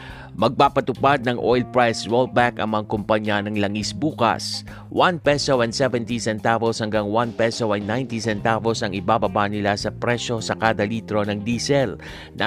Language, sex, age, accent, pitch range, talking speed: Filipino, male, 50-69, native, 105-125 Hz, 160 wpm